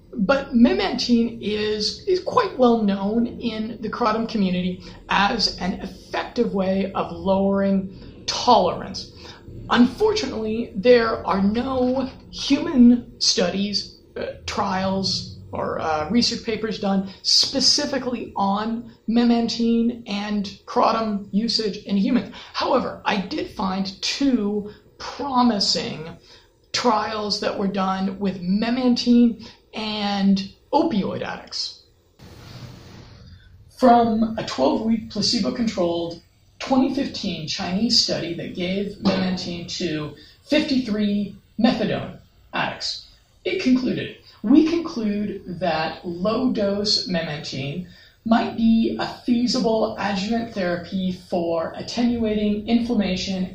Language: English